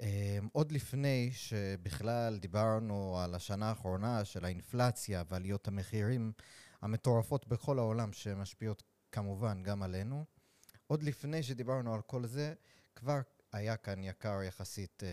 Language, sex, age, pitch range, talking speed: Hebrew, male, 30-49, 95-120 Hz, 115 wpm